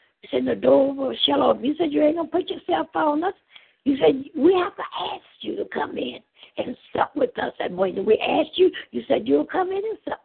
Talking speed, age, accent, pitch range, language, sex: 250 wpm, 60-79, American, 270-375 Hz, English, female